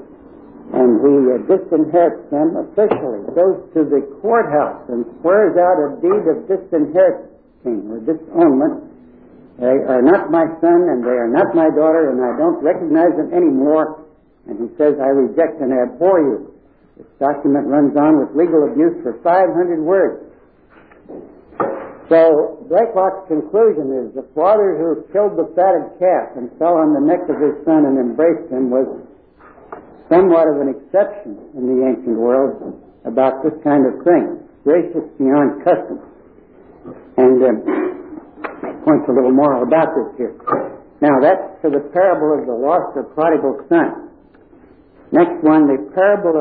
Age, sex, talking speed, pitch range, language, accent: 60-79, male, 155 wpm, 145-205 Hz, English, American